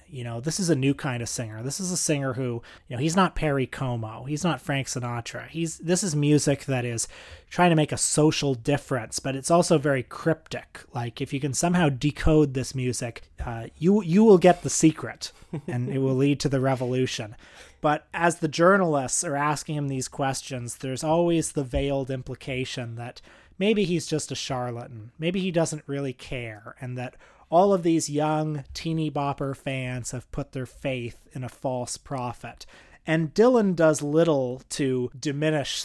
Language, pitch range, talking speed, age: English, 130-155 Hz, 185 wpm, 30-49